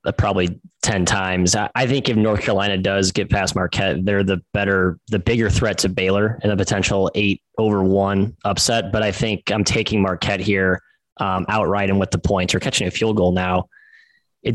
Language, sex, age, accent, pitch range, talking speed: English, male, 20-39, American, 95-110 Hz, 195 wpm